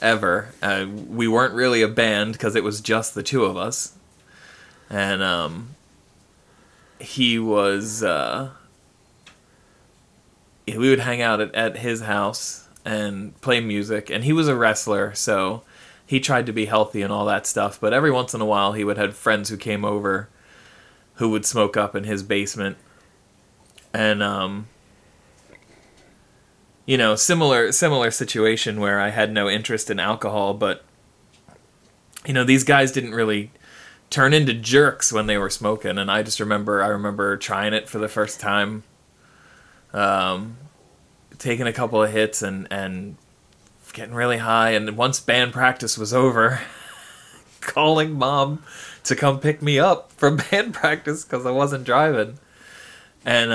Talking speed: 155 wpm